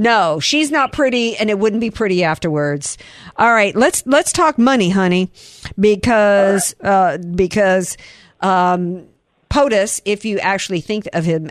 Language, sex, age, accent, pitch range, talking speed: English, female, 50-69, American, 180-220 Hz, 145 wpm